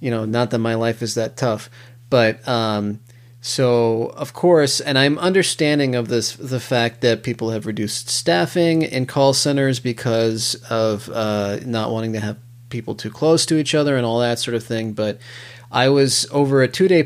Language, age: English, 30-49